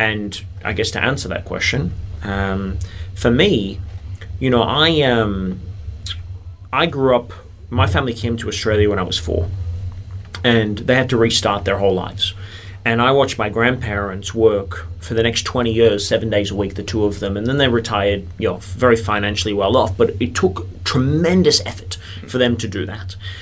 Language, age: English, 30-49